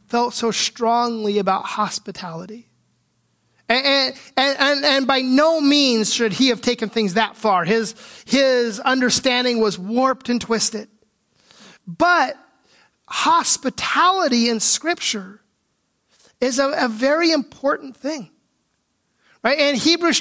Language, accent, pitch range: English, American, 220-290 Hz